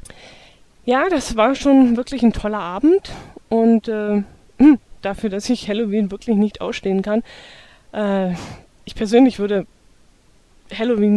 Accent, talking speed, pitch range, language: German, 125 wpm, 195-230 Hz, German